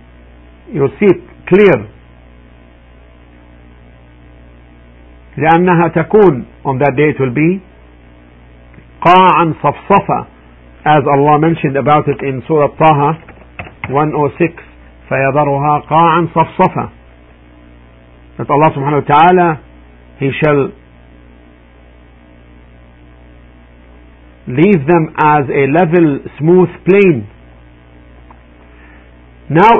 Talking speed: 90 wpm